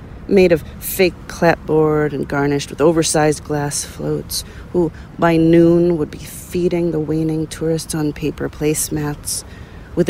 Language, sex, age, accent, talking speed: English, female, 40-59, American, 135 wpm